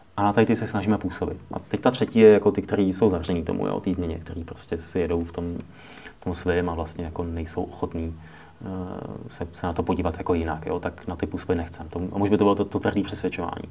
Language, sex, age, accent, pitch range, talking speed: Czech, male, 30-49, native, 95-105 Hz, 255 wpm